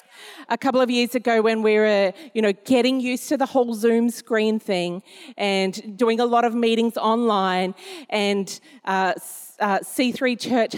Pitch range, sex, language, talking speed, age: 210-260 Hz, female, English, 160 wpm, 40-59